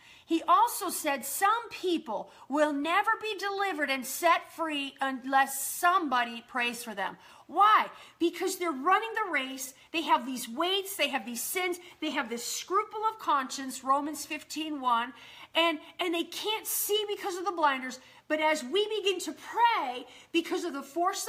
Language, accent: English, American